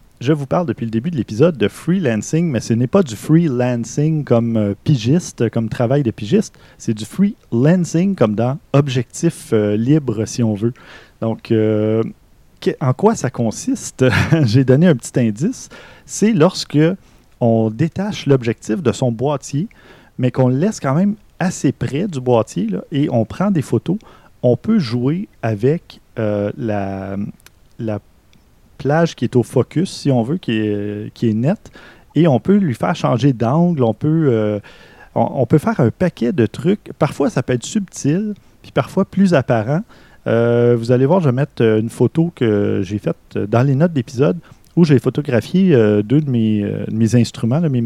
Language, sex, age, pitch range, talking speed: French, male, 30-49, 110-160 Hz, 185 wpm